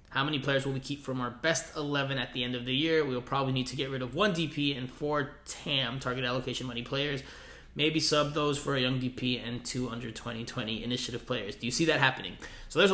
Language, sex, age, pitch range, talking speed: English, male, 20-39, 130-155 Hz, 245 wpm